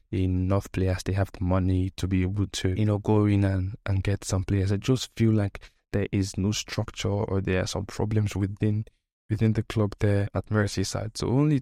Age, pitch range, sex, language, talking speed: 10-29, 95-105 Hz, male, English, 210 wpm